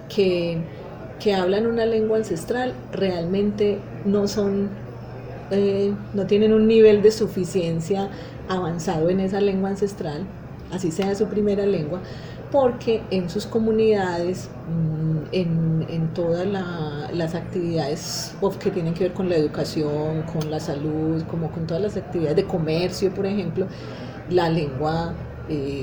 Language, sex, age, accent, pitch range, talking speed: Spanish, female, 30-49, Colombian, 155-190 Hz, 135 wpm